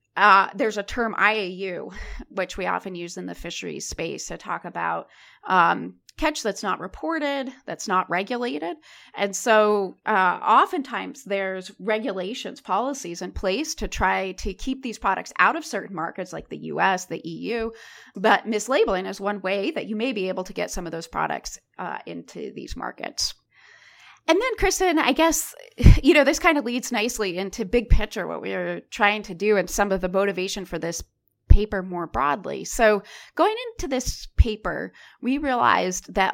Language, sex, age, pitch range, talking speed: English, female, 30-49, 190-265 Hz, 175 wpm